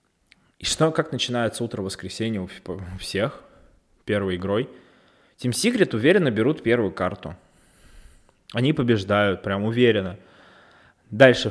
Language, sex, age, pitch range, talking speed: Russian, male, 20-39, 100-125 Hz, 110 wpm